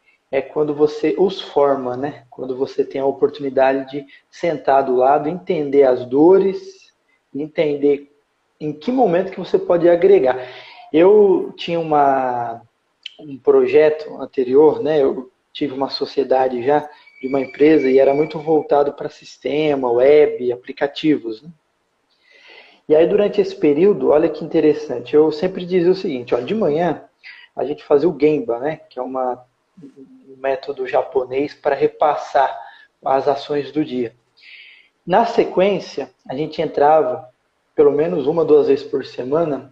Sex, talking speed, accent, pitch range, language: male, 145 wpm, Brazilian, 140-195 Hz, Portuguese